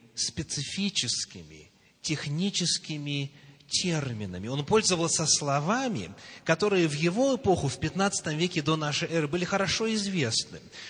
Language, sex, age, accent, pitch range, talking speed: Russian, male, 30-49, native, 140-200 Hz, 105 wpm